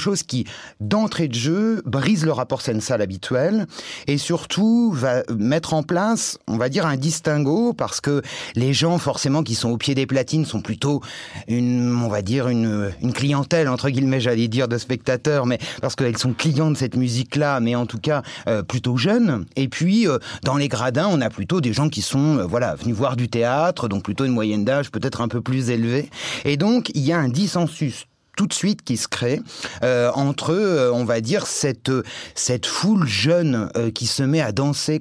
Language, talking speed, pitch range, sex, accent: French, 205 wpm, 120-160 Hz, male, French